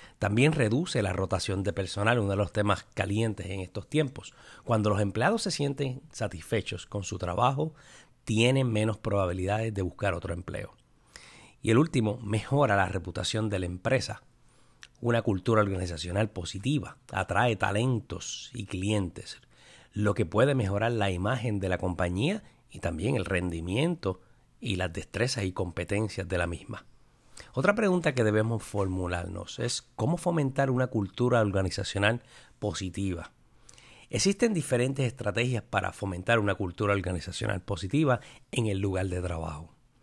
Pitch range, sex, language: 95-125 Hz, male, Spanish